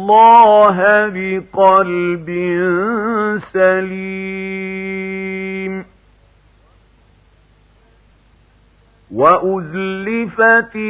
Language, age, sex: Arabic, 50-69, male